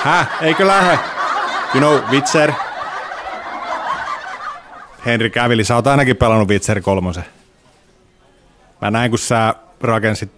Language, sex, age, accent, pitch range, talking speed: Finnish, male, 30-49, native, 105-140 Hz, 105 wpm